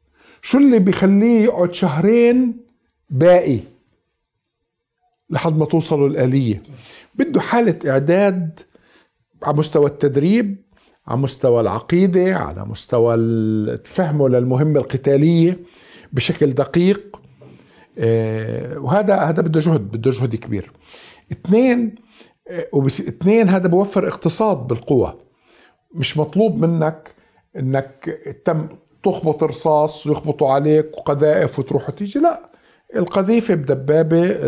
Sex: male